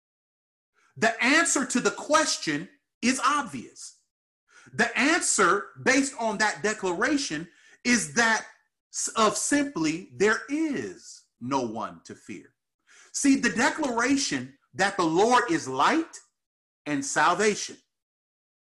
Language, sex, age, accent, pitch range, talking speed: English, male, 40-59, American, 205-305 Hz, 105 wpm